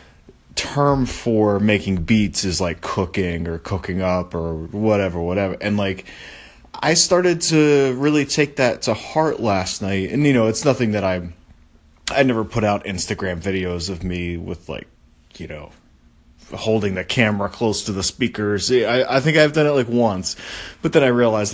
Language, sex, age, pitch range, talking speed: English, male, 30-49, 90-115 Hz, 175 wpm